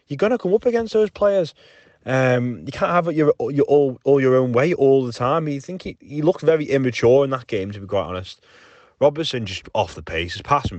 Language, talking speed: English, 235 wpm